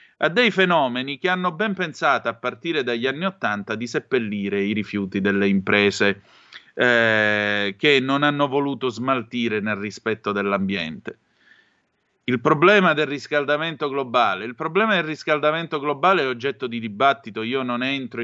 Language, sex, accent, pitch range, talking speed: Italian, male, native, 110-140 Hz, 145 wpm